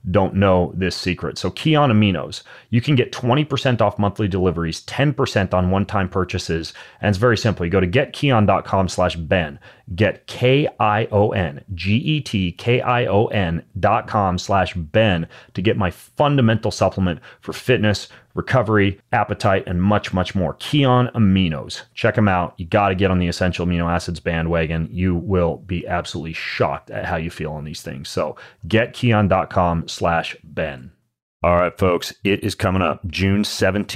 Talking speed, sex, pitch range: 150 wpm, male, 90-105 Hz